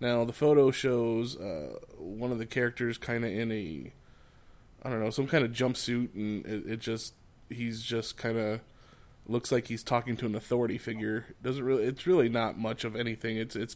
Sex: male